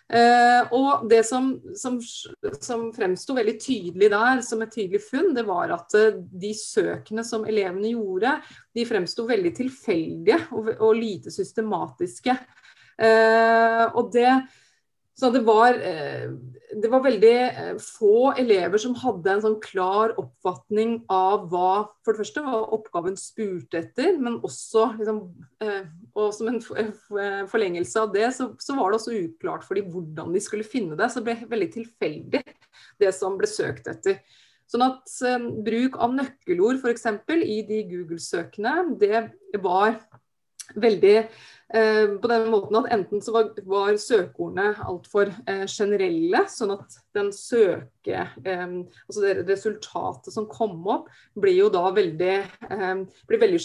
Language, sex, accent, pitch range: English, female, Swedish, 205-255 Hz